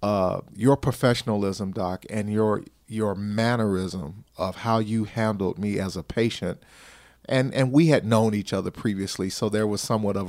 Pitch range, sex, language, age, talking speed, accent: 105-120 Hz, male, English, 40-59, 170 wpm, American